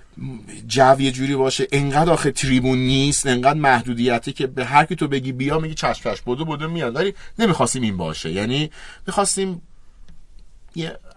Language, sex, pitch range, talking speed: Persian, male, 105-140 Hz, 150 wpm